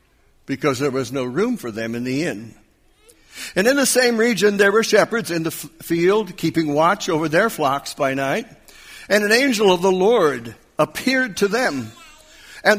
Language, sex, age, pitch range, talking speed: English, male, 60-79, 155-225 Hz, 185 wpm